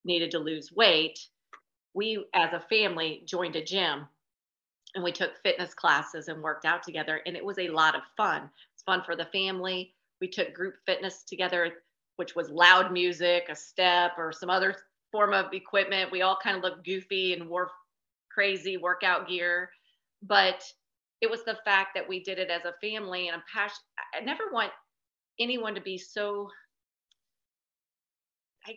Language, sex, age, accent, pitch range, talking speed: English, female, 40-59, American, 170-200 Hz, 175 wpm